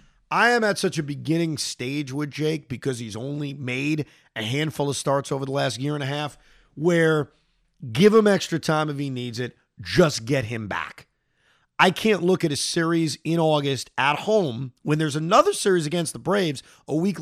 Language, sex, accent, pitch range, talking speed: English, male, American, 130-175 Hz, 195 wpm